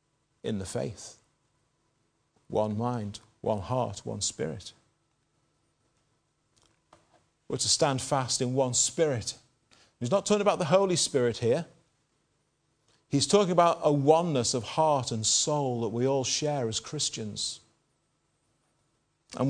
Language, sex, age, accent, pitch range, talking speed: English, male, 40-59, British, 130-180 Hz, 125 wpm